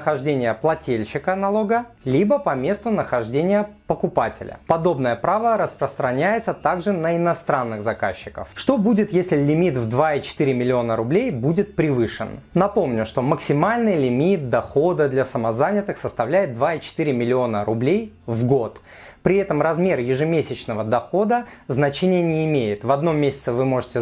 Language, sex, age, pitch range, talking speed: Russian, male, 30-49, 130-185 Hz, 125 wpm